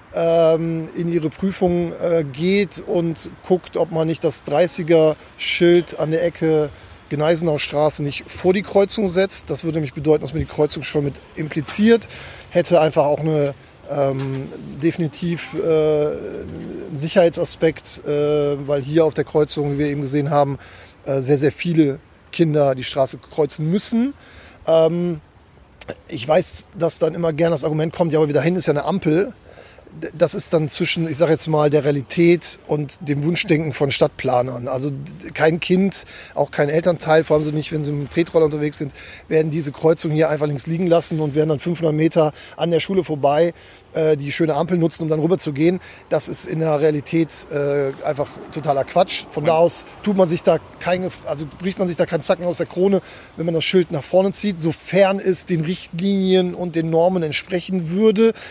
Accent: German